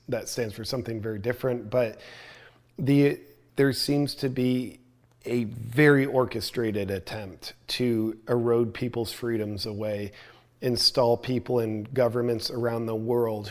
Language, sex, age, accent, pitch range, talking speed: English, male, 40-59, American, 110-125 Hz, 125 wpm